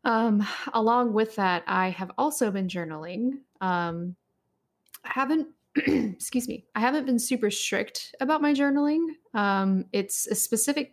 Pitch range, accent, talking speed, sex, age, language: 185-250 Hz, American, 145 wpm, female, 10-29, English